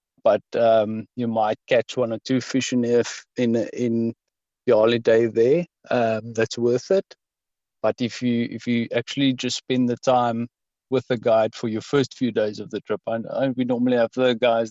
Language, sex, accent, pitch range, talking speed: English, male, South African, 115-140 Hz, 195 wpm